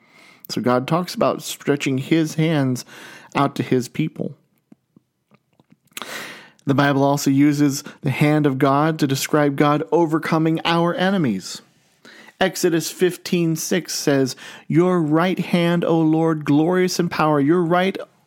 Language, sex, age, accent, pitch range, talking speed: English, male, 40-59, American, 135-165 Hz, 130 wpm